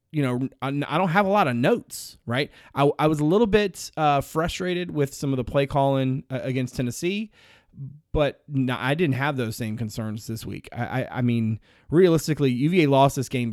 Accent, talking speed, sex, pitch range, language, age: American, 195 wpm, male, 120-155 Hz, English, 30-49